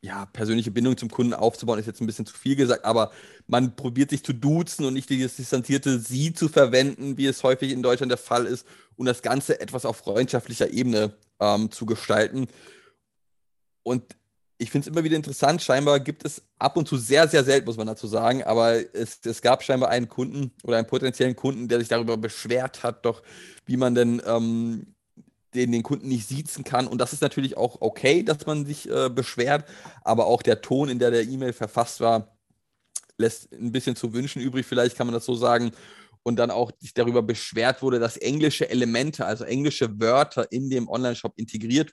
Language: German